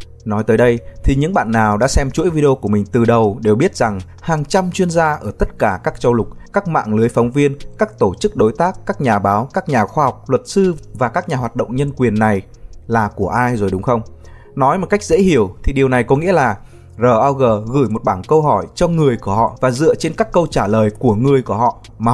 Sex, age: male, 20-39